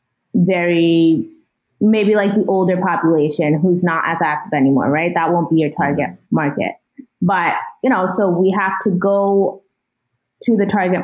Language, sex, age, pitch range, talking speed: English, female, 20-39, 175-210 Hz, 160 wpm